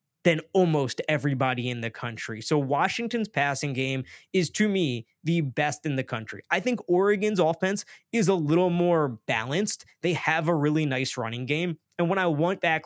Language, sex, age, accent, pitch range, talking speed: English, male, 20-39, American, 130-170 Hz, 180 wpm